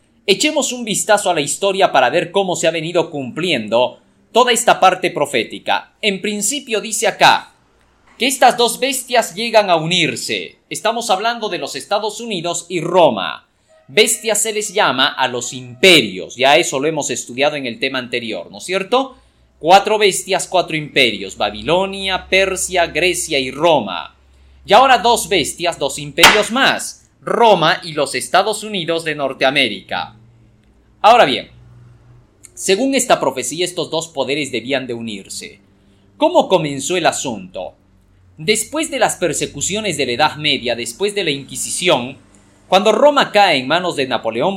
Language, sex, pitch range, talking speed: Spanish, male, 135-215 Hz, 150 wpm